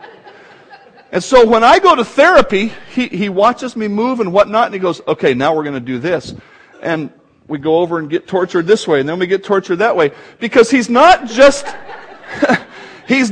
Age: 50-69